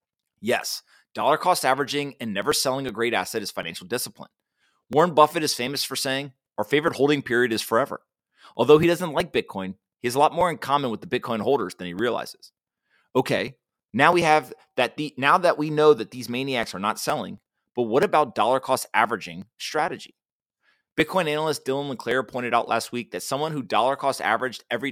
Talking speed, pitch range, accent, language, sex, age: 195 wpm, 125-150 Hz, American, English, male, 30-49